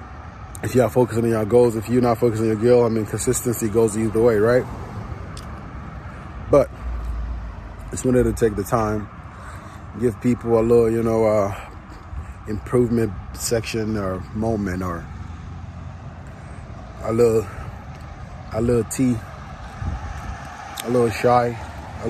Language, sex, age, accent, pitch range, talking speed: English, male, 20-39, American, 90-120 Hz, 130 wpm